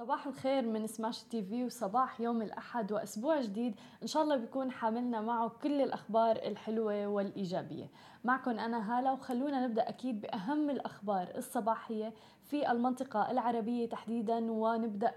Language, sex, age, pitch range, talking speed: Arabic, female, 20-39, 205-245 Hz, 140 wpm